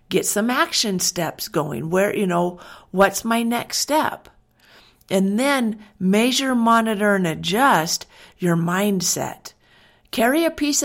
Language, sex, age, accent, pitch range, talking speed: English, female, 50-69, American, 185-250 Hz, 125 wpm